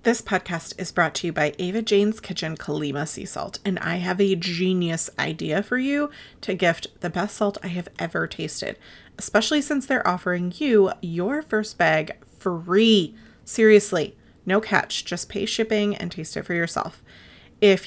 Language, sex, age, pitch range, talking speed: English, female, 30-49, 175-215 Hz, 170 wpm